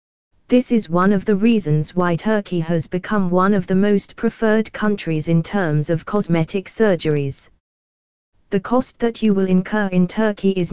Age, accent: 20-39, British